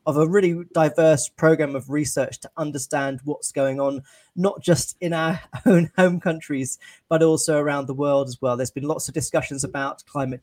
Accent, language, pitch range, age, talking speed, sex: British, English, 140-160 Hz, 30-49, 190 wpm, male